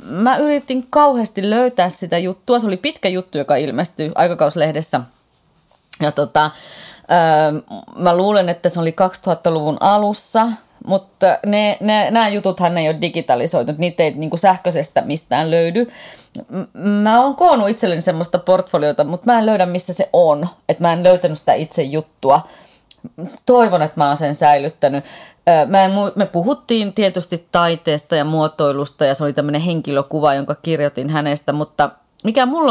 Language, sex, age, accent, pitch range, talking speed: Finnish, female, 30-49, native, 150-195 Hz, 150 wpm